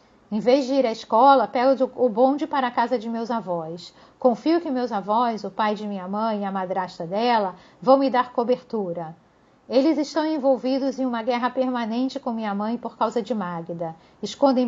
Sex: female